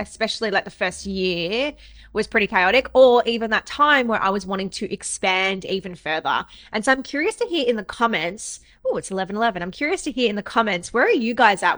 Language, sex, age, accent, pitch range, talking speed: English, female, 20-39, Australian, 200-260 Hz, 230 wpm